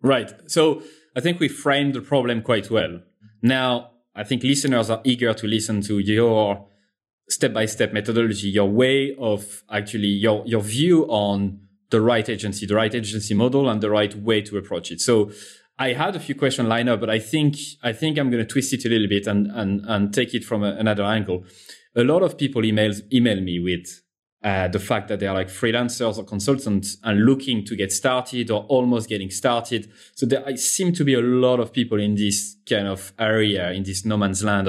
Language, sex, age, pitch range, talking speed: English, male, 20-39, 100-130 Hz, 210 wpm